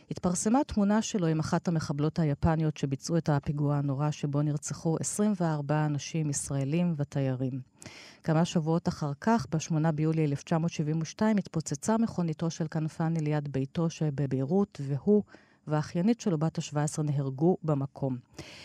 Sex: female